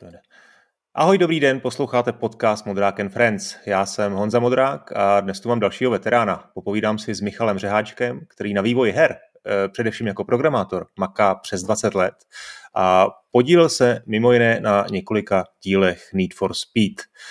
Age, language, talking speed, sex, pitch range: 30-49, Czech, 155 wpm, male, 100-125 Hz